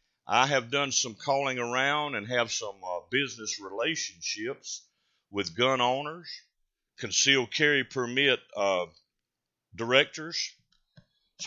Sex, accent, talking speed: male, American, 110 wpm